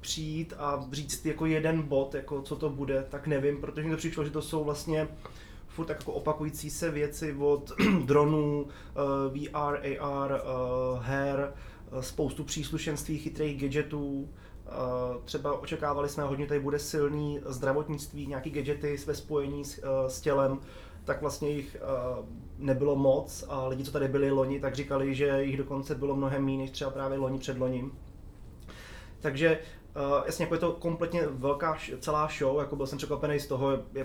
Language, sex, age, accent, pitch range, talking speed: Czech, male, 20-39, native, 130-145 Hz, 160 wpm